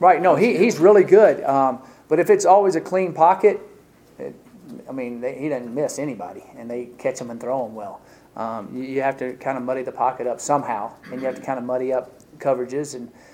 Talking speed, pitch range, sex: 230 wpm, 125-140 Hz, male